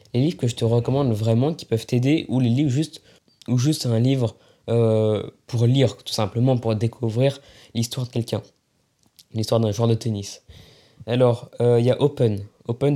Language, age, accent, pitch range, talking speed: French, 20-39, French, 115-140 Hz, 185 wpm